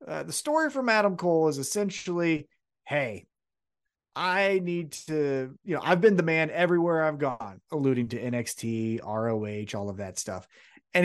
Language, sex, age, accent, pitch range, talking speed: English, male, 30-49, American, 135-195 Hz, 165 wpm